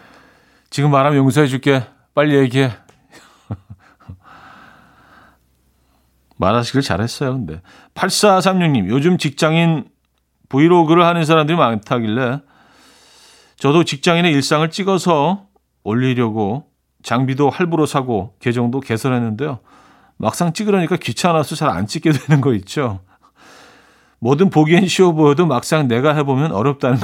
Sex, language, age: male, Korean, 40-59